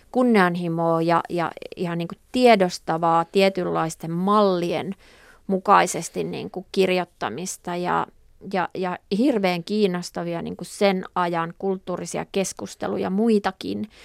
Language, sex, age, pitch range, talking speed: Finnish, female, 30-49, 170-215 Hz, 100 wpm